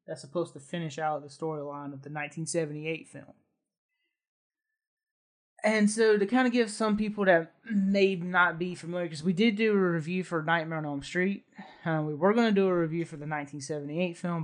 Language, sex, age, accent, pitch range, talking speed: English, male, 20-39, American, 155-195 Hz, 195 wpm